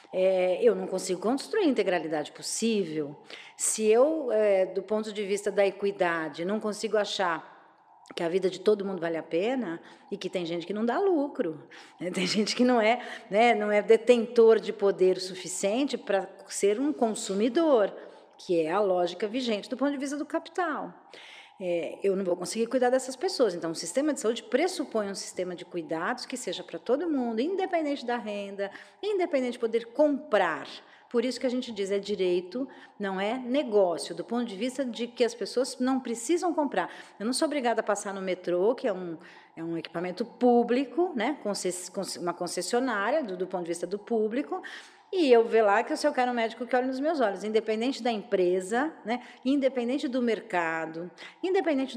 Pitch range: 190-255 Hz